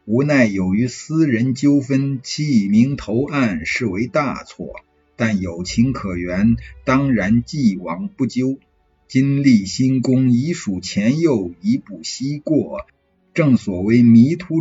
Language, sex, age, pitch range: Chinese, male, 50-69, 105-150 Hz